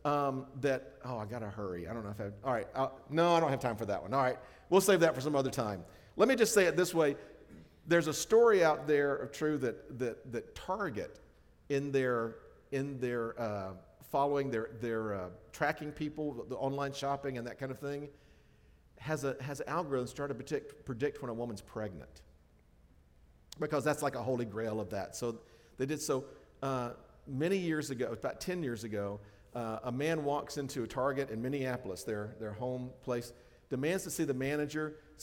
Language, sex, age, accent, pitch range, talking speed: English, male, 50-69, American, 115-145 Hz, 205 wpm